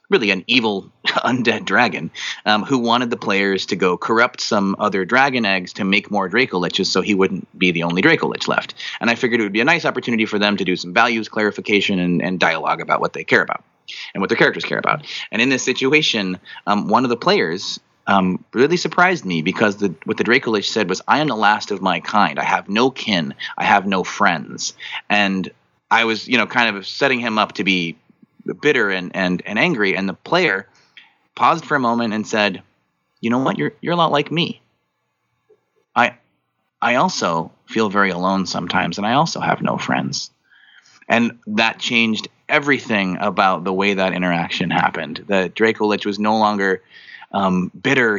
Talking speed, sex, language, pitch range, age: 200 wpm, male, English, 95-120 Hz, 30-49